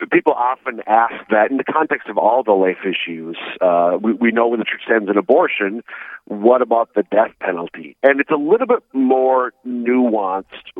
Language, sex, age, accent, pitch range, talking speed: English, male, 40-59, American, 95-125 Hz, 190 wpm